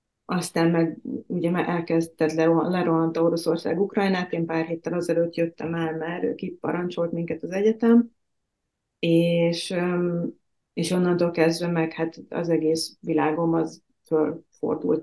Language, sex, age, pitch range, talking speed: Hungarian, female, 30-49, 160-180 Hz, 115 wpm